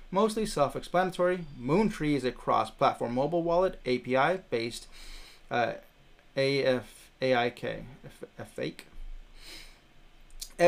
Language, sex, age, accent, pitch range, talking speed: English, male, 30-49, American, 140-185 Hz, 85 wpm